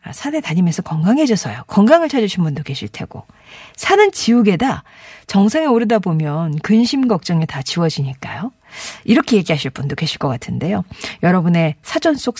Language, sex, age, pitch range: Korean, female, 40-59, 175-290 Hz